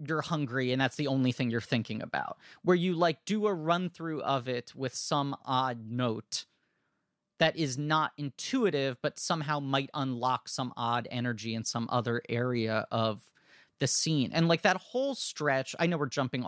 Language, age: English, 30-49